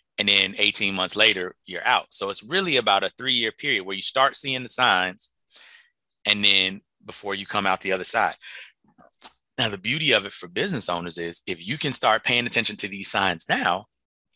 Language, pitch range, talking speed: English, 95-115 Hz, 200 wpm